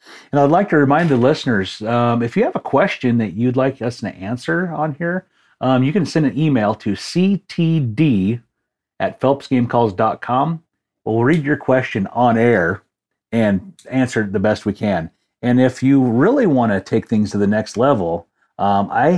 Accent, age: American, 40-59